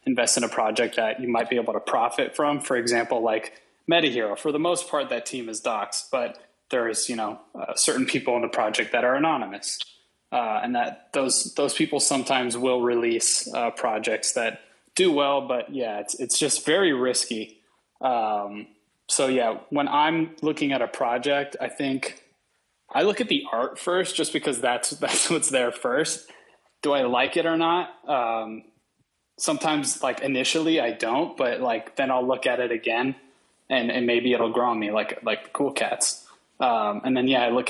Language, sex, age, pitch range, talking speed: English, male, 20-39, 115-140 Hz, 195 wpm